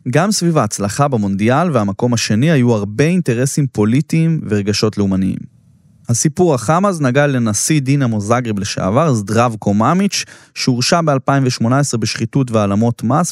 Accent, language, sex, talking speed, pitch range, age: native, Hebrew, male, 120 wpm, 115-160 Hz, 20-39